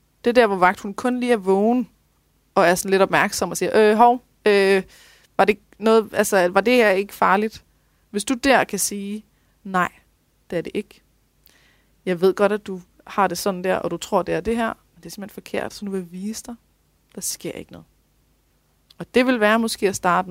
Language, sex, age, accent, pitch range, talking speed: Danish, female, 30-49, native, 175-215 Hz, 225 wpm